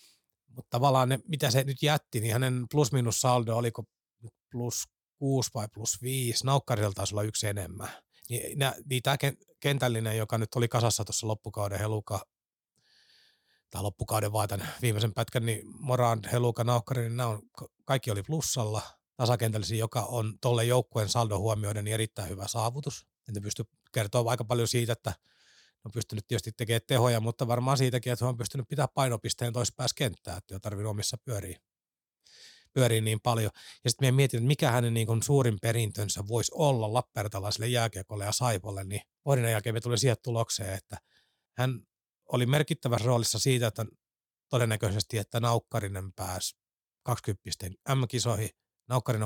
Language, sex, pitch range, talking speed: Finnish, male, 105-125 Hz, 150 wpm